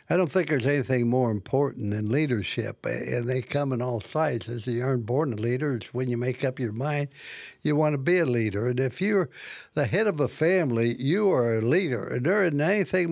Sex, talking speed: male, 225 wpm